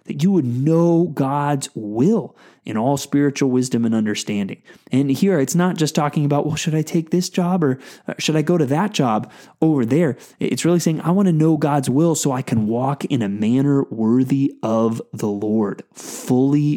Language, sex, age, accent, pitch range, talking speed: English, male, 20-39, American, 120-165 Hz, 195 wpm